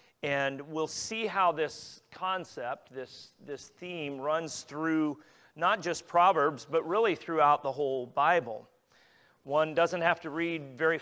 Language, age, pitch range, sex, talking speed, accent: English, 40-59, 145-180 Hz, male, 140 wpm, American